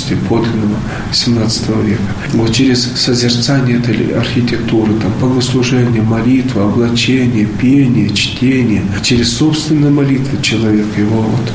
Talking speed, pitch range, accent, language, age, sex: 110 wpm, 115-135 Hz, native, Russian, 40-59, male